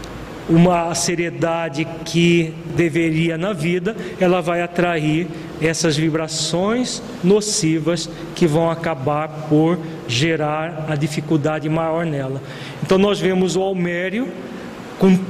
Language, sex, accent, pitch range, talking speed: Portuguese, male, Brazilian, 165-195 Hz, 105 wpm